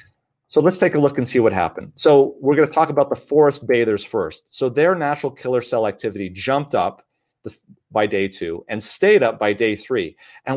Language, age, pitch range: English, 40-59, 115-155 Hz